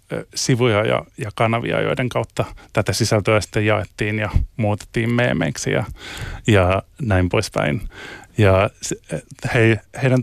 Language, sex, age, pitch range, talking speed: Finnish, male, 30-49, 95-120 Hz, 115 wpm